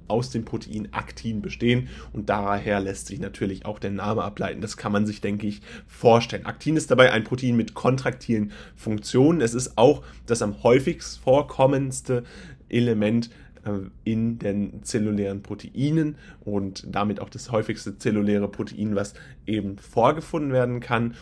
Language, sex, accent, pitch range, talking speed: German, male, German, 105-120 Hz, 150 wpm